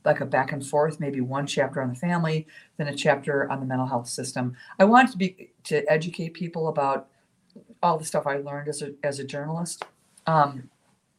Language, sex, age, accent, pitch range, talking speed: English, female, 50-69, American, 135-170 Hz, 205 wpm